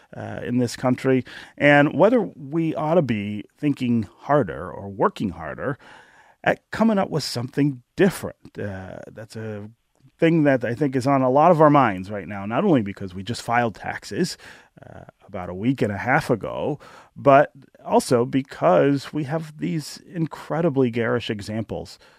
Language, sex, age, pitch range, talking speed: English, male, 30-49, 105-145 Hz, 165 wpm